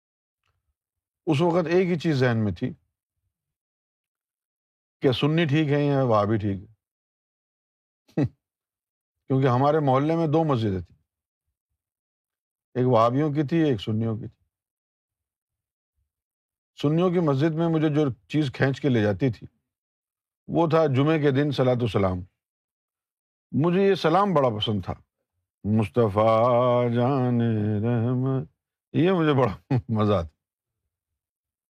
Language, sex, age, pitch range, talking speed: Urdu, male, 50-69, 100-140 Hz, 120 wpm